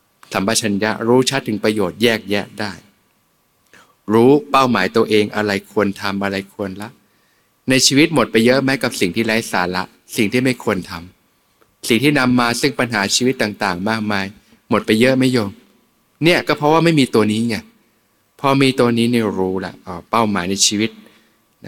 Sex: male